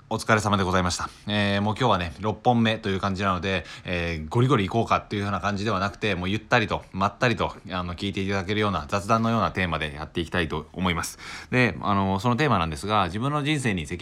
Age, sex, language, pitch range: 20-39, male, Japanese, 90-115 Hz